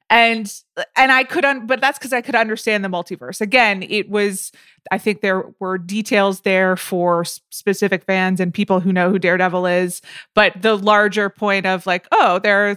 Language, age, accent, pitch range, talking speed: English, 20-39, American, 180-215 Hz, 195 wpm